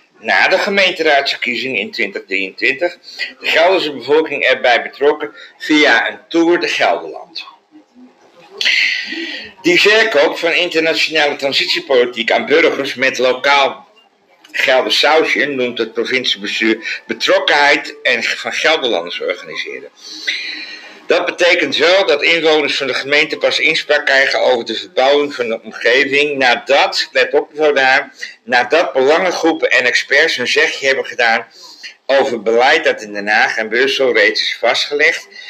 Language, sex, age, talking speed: Dutch, male, 50-69, 120 wpm